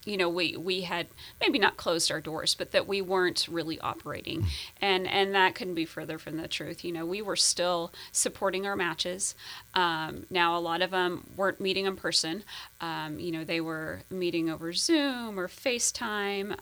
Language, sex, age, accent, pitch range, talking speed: English, female, 30-49, American, 165-190 Hz, 190 wpm